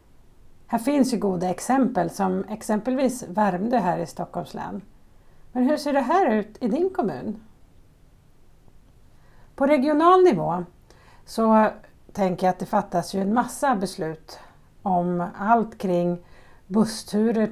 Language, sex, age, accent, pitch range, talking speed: Swedish, female, 50-69, native, 190-245 Hz, 130 wpm